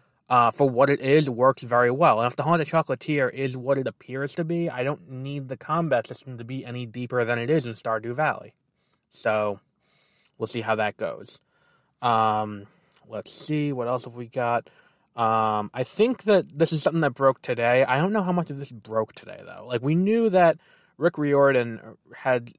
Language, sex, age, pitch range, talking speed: English, male, 20-39, 115-145 Hz, 200 wpm